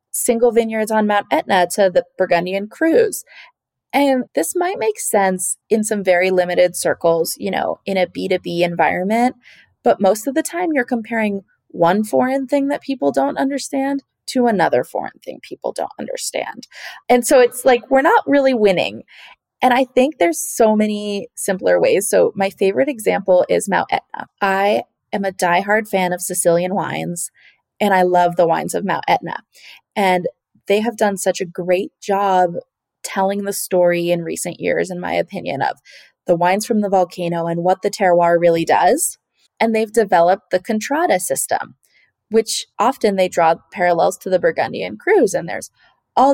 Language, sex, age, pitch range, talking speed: English, female, 20-39, 180-250 Hz, 170 wpm